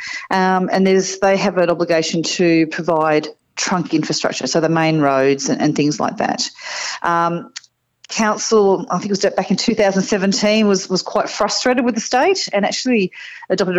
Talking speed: 170 wpm